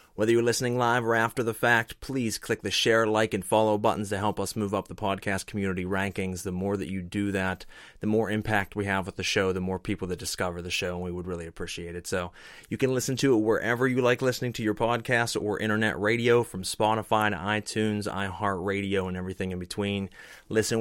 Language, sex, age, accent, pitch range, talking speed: English, male, 30-49, American, 95-115 Hz, 225 wpm